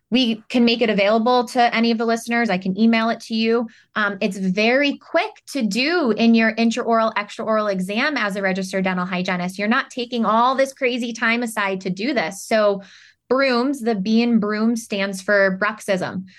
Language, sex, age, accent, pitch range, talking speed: English, female, 20-39, American, 195-235 Hz, 190 wpm